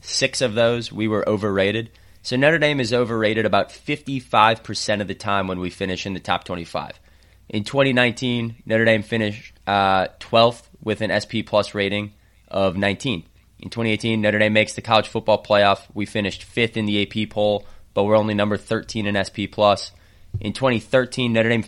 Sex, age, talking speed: male, 20-39, 180 wpm